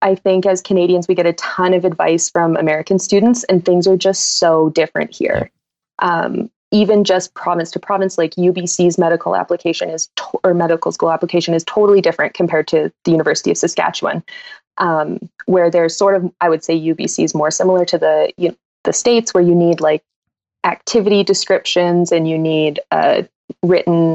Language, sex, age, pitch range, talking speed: English, female, 20-39, 165-190 Hz, 175 wpm